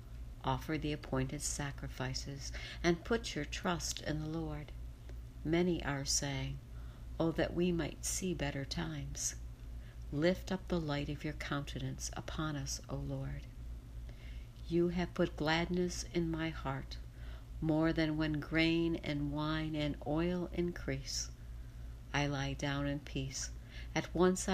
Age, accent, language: 60-79, American, English